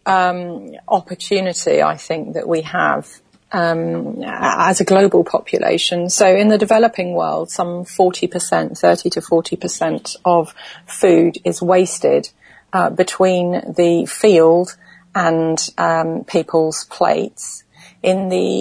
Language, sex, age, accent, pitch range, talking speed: English, female, 40-59, British, 165-195 Hz, 125 wpm